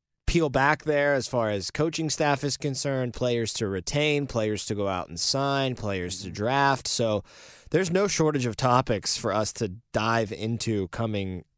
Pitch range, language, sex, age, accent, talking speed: 105-130 Hz, English, male, 20-39, American, 175 wpm